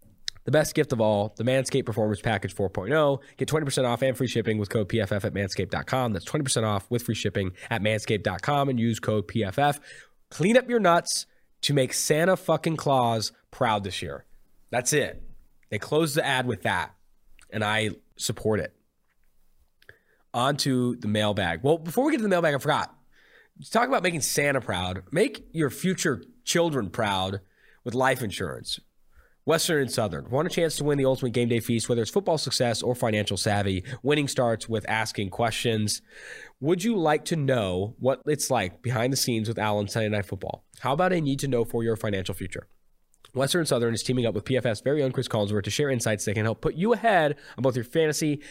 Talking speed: 195 wpm